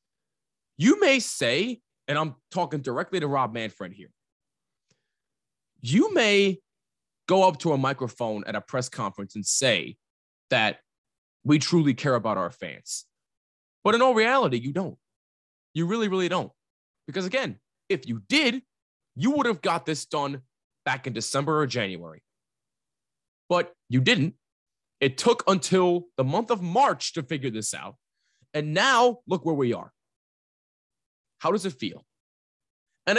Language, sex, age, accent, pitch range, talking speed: English, male, 20-39, American, 125-190 Hz, 150 wpm